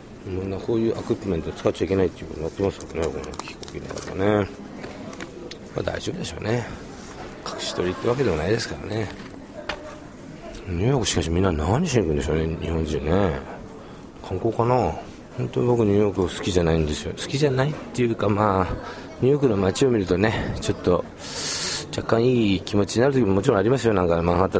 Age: 40-59